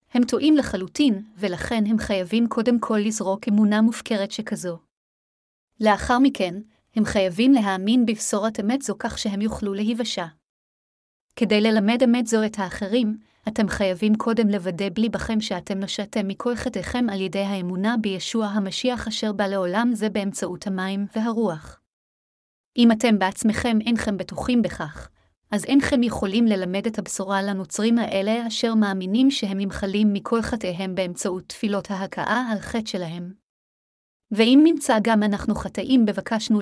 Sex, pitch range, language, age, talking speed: female, 195-230 Hz, Hebrew, 30-49, 135 wpm